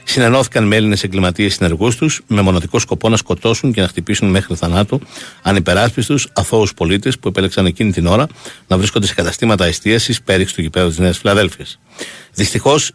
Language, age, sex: Greek, 60-79, male